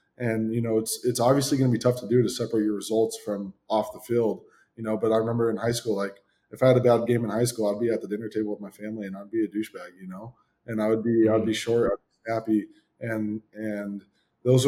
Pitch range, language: 110-125 Hz, English